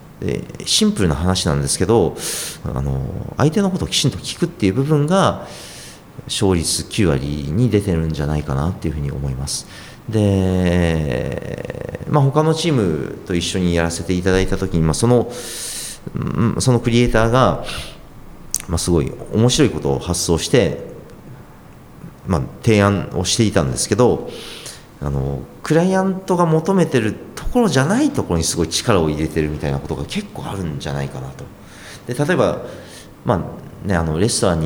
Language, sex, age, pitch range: Japanese, male, 40-59, 80-125 Hz